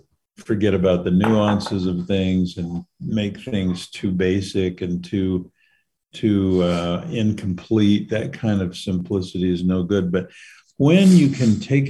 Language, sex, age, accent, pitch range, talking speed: English, male, 50-69, American, 95-125 Hz, 140 wpm